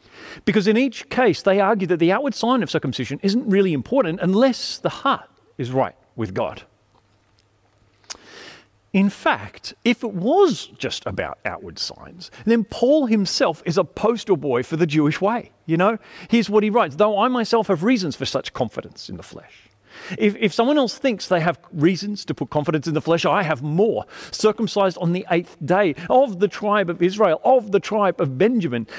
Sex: male